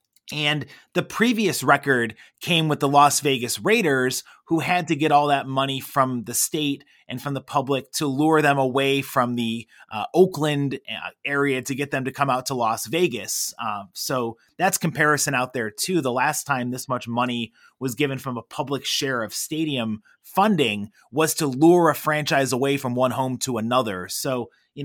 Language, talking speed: English, 185 wpm